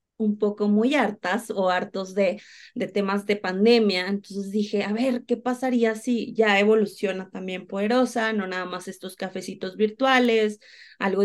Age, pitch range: 20-39, 195-235 Hz